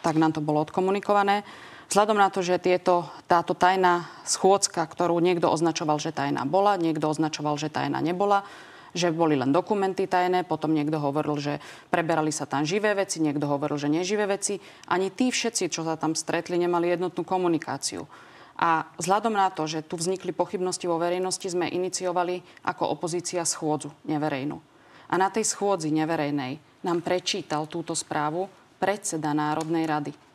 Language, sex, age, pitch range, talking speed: Slovak, female, 30-49, 155-190 Hz, 160 wpm